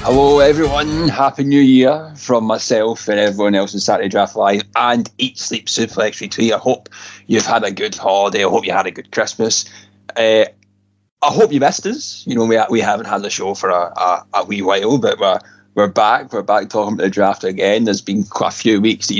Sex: male